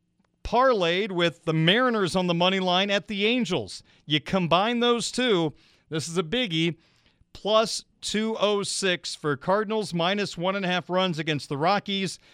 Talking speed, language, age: 155 wpm, English, 40-59